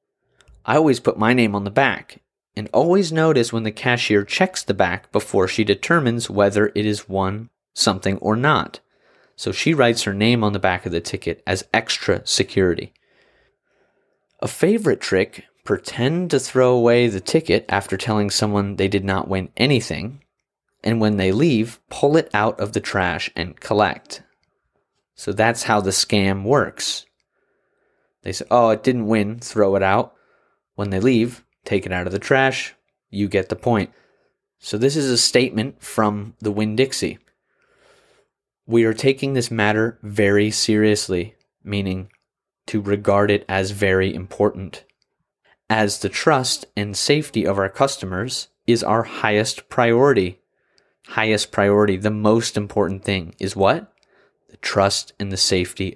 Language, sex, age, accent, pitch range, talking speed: English, male, 30-49, American, 100-120 Hz, 155 wpm